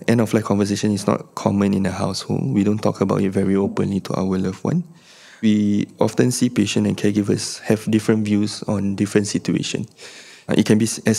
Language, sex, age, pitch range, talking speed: English, male, 20-39, 100-110 Hz, 190 wpm